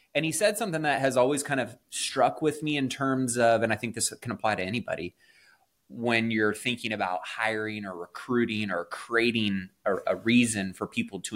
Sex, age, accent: male, 20-39, American